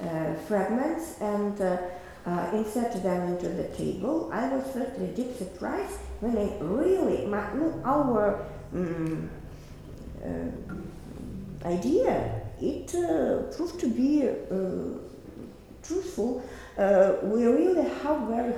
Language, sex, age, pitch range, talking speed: English, female, 50-69, 175-245 Hz, 115 wpm